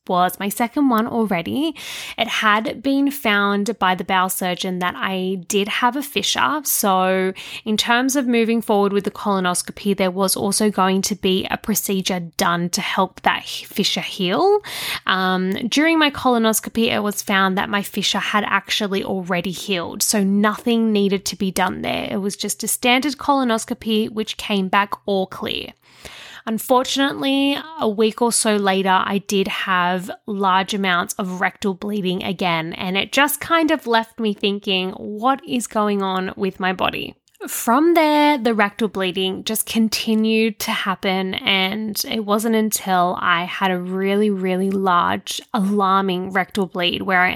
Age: 10-29